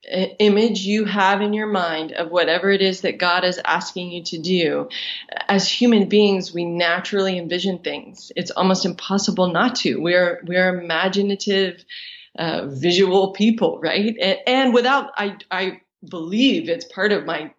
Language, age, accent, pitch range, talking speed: English, 20-39, American, 175-215 Hz, 160 wpm